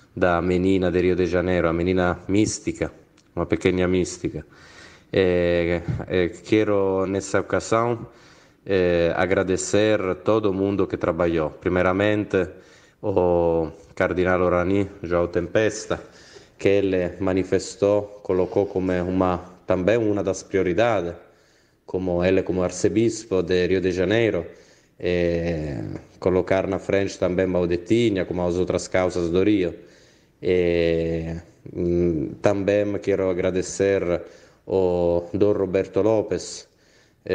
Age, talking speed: 20-39, 110 wpm